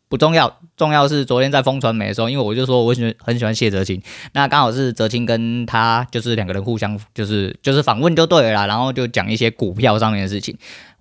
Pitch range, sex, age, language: 105-130 Hz, male, 20-39, Chinese